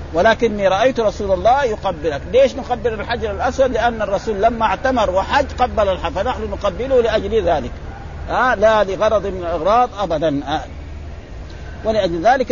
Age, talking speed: 50-69, 135 wpm